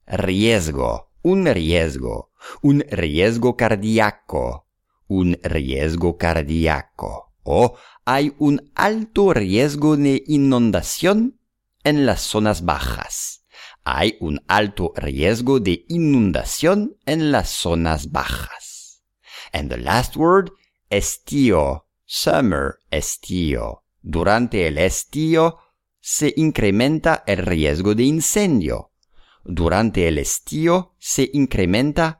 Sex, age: male, 50-69